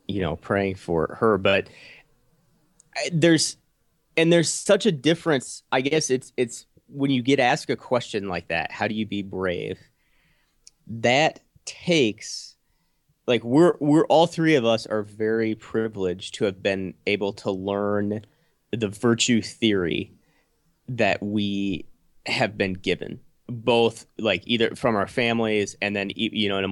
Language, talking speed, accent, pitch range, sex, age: English, 150 wpm, American, 100-140 Hz, male, 30-49